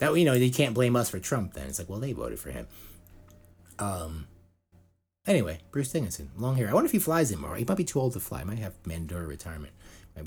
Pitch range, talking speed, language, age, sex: 85-120 Hz, 240 wpm, English, 30-49, male